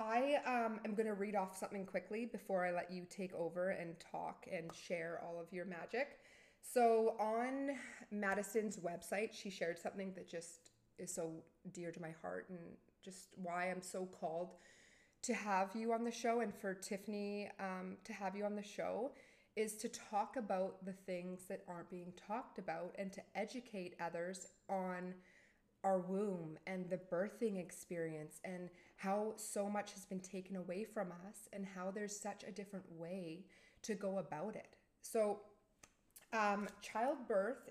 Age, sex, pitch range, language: 20-39, female, 180-215 Hz, English